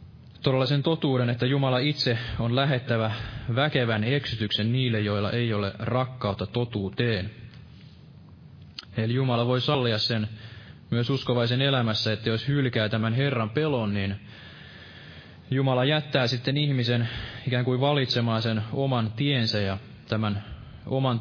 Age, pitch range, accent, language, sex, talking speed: 20-39, 110-135 Hz, native, Finnish, male, 125 wpm